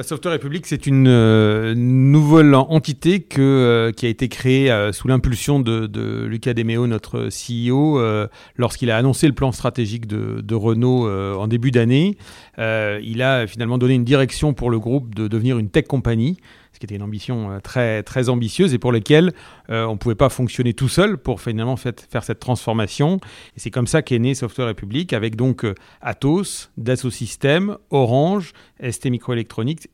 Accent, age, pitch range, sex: French, 40-59, 115-140 Hz, male